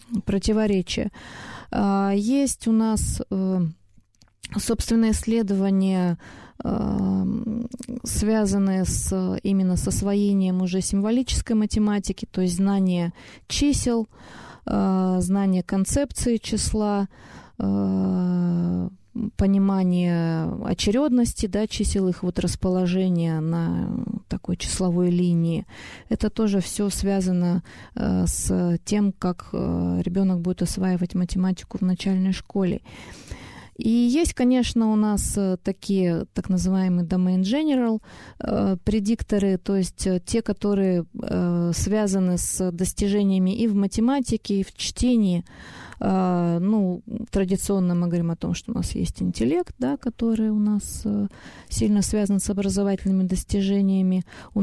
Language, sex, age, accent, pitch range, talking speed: Russian, female, 20-39, native, 180-215 Hz, 110 wpm